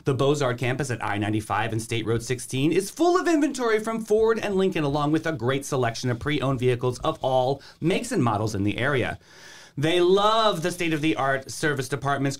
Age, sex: 30-49, male